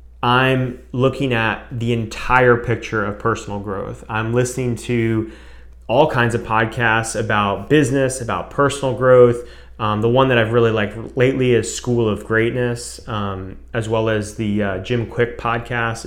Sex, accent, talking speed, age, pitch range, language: male, American, 155 wpm, 30-49, 110-125 Hz, English